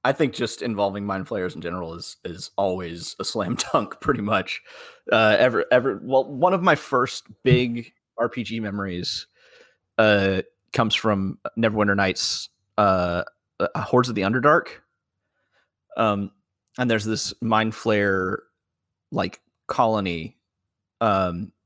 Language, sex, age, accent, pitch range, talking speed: English, male, 30-49, American, 95-115 Hz, 130 wpm